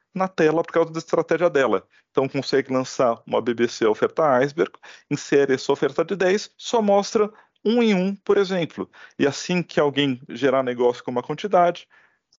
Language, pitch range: Portuguese, 120-165 Hz